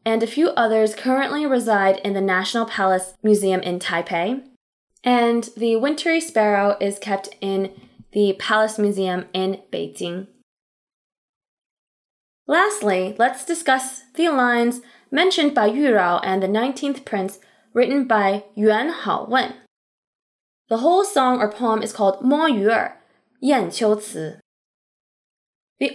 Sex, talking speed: female, 125 wpm